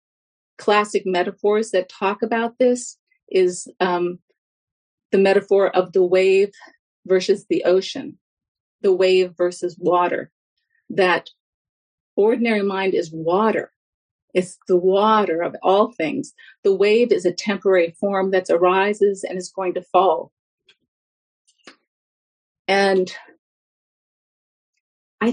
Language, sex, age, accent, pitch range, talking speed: English, female, 50-69, American, 180-220 Hz, 110 wpm